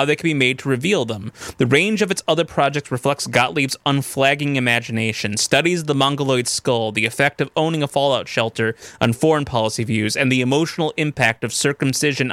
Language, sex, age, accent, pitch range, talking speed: German, male, 20-39, American, 120-150 Hz, 190 wpm